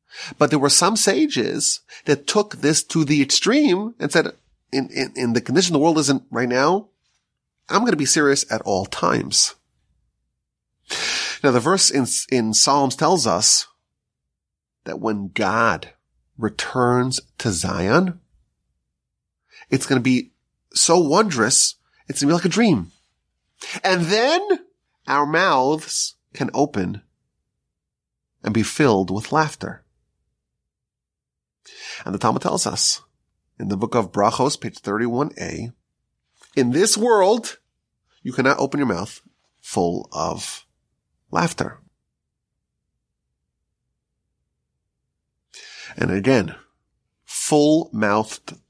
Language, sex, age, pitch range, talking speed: English, male, 30-49, 100-155 Hz, 115 wpm